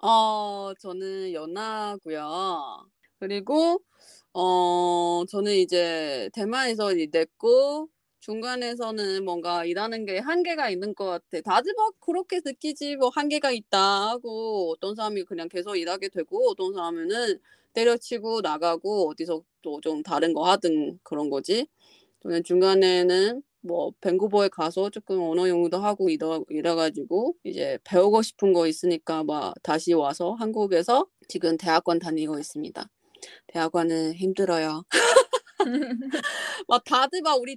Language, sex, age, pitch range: Korean, female, 20-39, 170-265 Hz